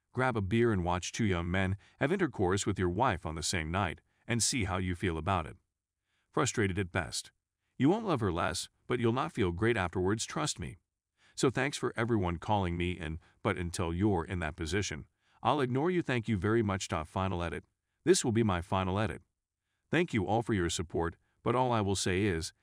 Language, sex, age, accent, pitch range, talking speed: English, male, 40-59, American, 90-115 Hz, 210 wpm